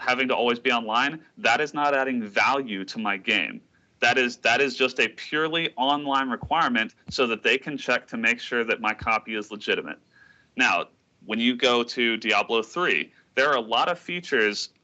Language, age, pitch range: English, 30-49, 110-130 Hz